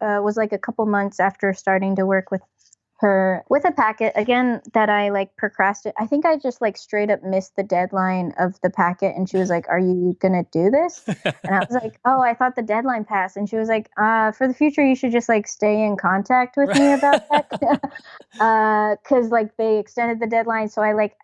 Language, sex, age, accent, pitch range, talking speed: English, female, 20-39, American, 195-245 Hz, 230 wpm